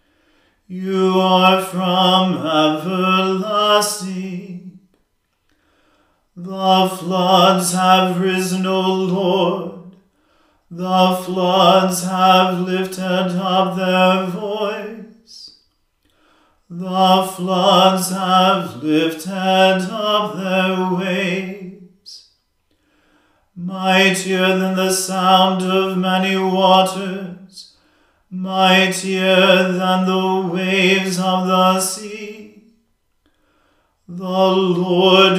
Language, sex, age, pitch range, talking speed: English, male, 40-59, 185-190 Hz, 70 wpm